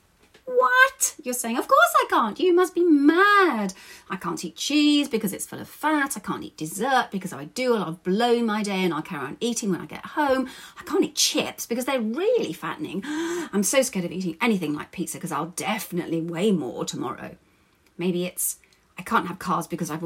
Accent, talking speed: British, 210 wpm